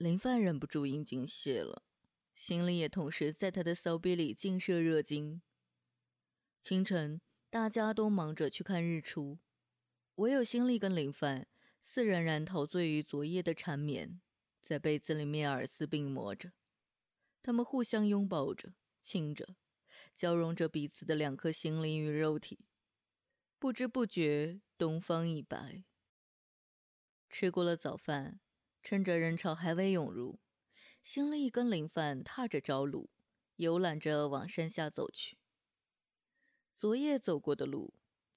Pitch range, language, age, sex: 155-195 Hz, Chinese, 20-39, female